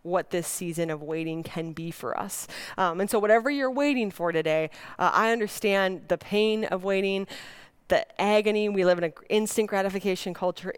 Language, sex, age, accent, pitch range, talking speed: English, female, 20-39, American, 170-210 Hz, 185 wpm